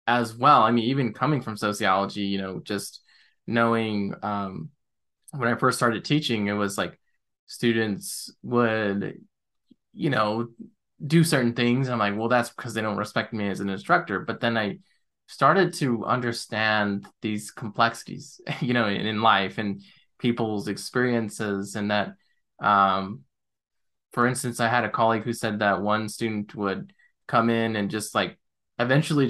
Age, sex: 20-39, male